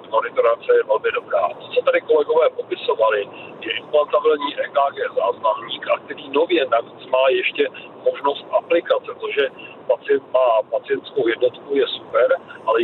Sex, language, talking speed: male, Czech, 140 wpm